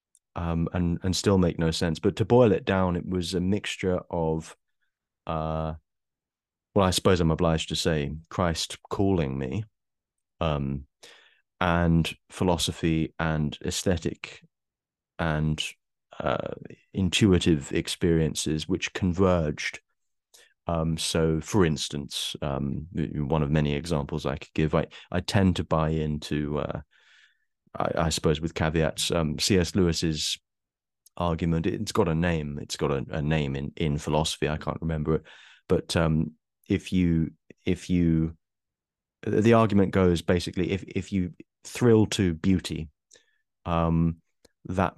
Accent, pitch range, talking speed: British, 80-90 Hz, 135 wpm